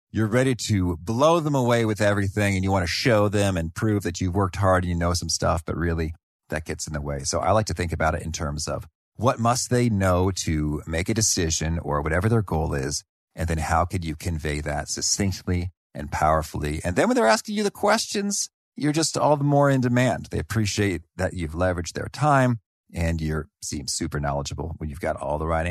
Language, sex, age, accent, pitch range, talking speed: English, male, 40-59, American, 80-115 Hz, 230 wpm